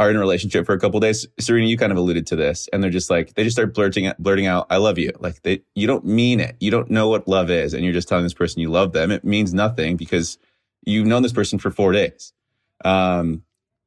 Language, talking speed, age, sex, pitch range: English, 265 wpm, 30-49, male, 85-105 Hz